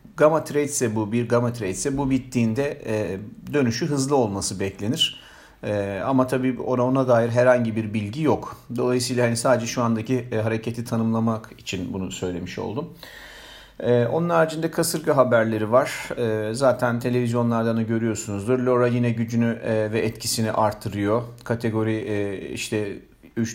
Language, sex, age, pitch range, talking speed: Turkish, male, 40-59, 110-125 Hz, 135 wpm